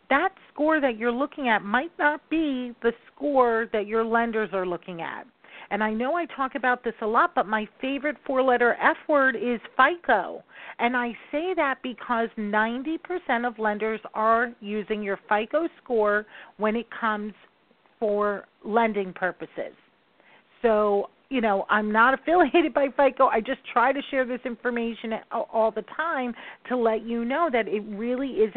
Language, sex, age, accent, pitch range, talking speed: English, female, 40-59, American, 215-265 Hz, 165 wpm